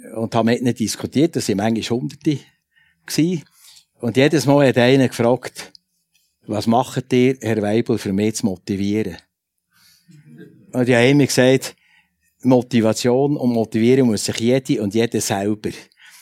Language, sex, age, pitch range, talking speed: German, male, 60-79, 110-125 Hz, 140 wpm